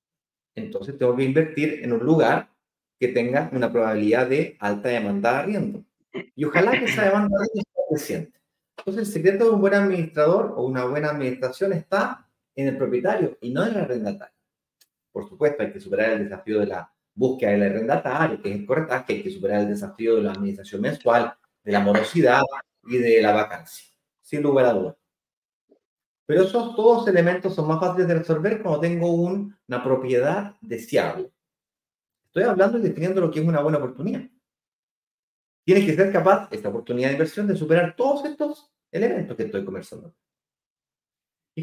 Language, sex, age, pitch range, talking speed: Spanish, male, 30-49, 130-200 Hz, 175 wpm